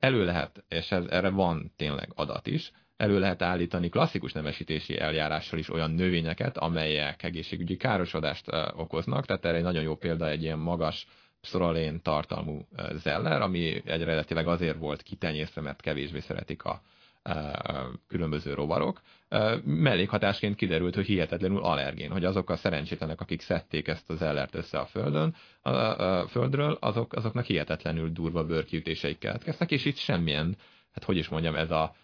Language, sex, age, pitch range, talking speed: Hungarian, male, 30-49, 80-95 Hz, 150 wpm